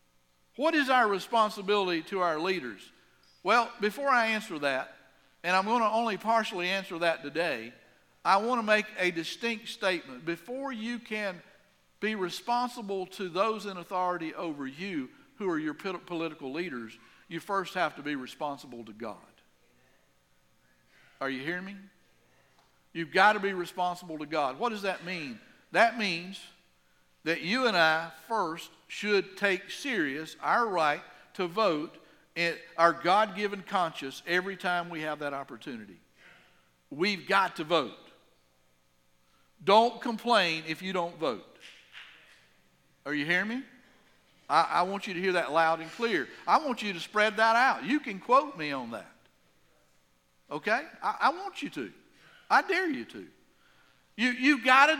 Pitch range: 150-220 Hz